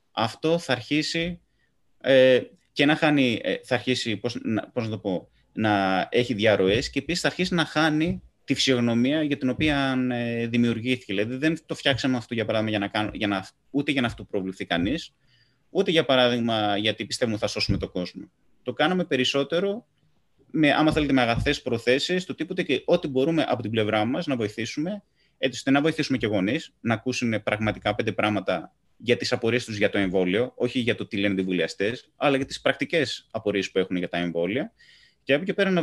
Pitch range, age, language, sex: 100-145 Hz, 30-49, Greek, male